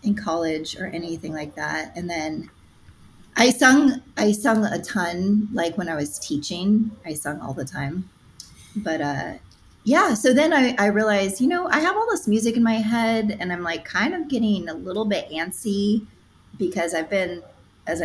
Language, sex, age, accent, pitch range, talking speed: English, female, 30-49, American, 165-220 Hz, 185 wpm